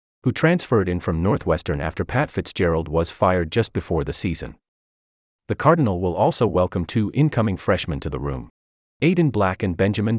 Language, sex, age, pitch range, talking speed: English, male, 30-49, 75-115 Hz, 170 wpm